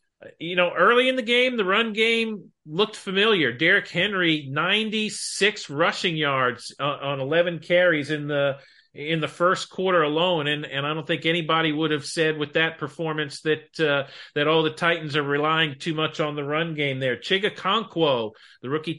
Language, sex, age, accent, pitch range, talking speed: English, male, 40-59, American, 140-165 Hz, 180 wpm